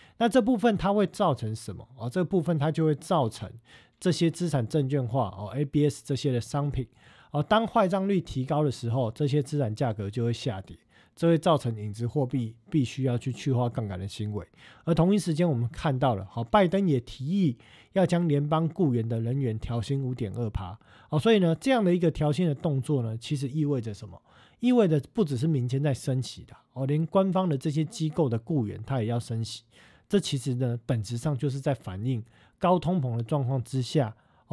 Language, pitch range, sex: Chinese, 115-160 Hz, male